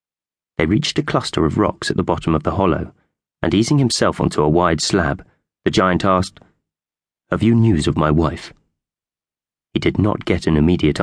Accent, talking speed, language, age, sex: British, 185 wpm, English, 30-49, male